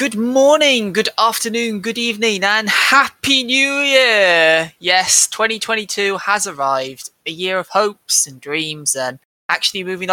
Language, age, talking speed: English, 20-39, 135 wpm